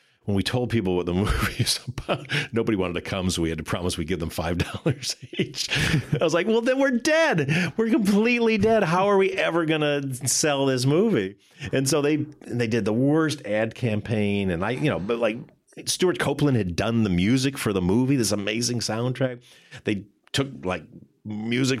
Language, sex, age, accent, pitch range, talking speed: English, male, 40-59, American, 105-150 Hz, 200 wpm